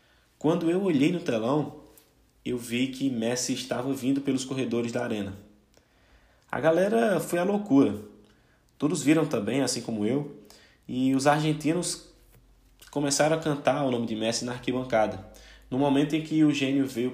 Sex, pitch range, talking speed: male, 115-150 Hz, 160 wpm